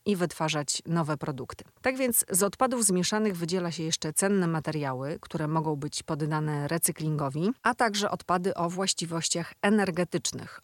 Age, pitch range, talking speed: 40-59, 155-185 Hz, 140 wpm